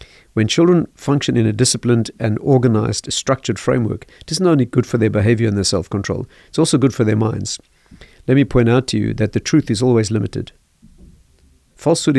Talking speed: 190 wpm